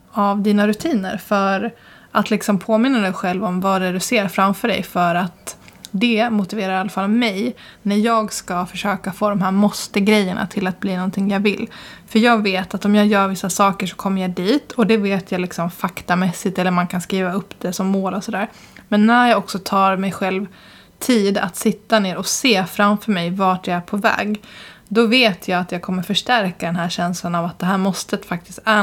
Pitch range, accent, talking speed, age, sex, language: 190-220 Hz, native, 220 wpm, 20-39, female, Swedish